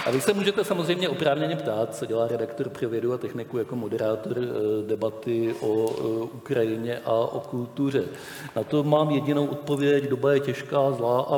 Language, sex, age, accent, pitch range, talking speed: Czech, male, 50-69, native, 115-140 Hz, 165 wpm